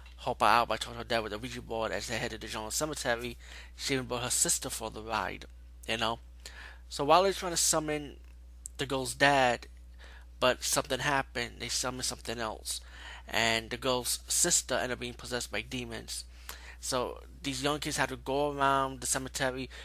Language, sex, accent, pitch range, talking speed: English, male, American, 85-135 Hz, 205 wpm